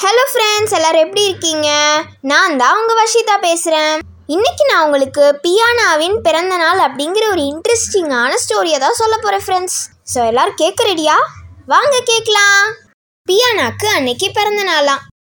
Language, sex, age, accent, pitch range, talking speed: English, female, 20-39, Indian, 275-415 Hz, 120 wpm